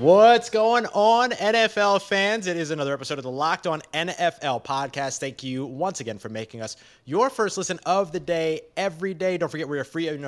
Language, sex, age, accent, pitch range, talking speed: English, male, 30-49, American, 120-175 Hz, 210 wpm